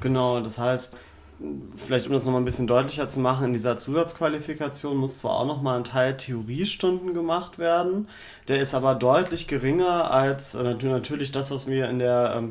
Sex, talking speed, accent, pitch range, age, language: male, 175 wpm, German, 120-145 Hz, 30-49, German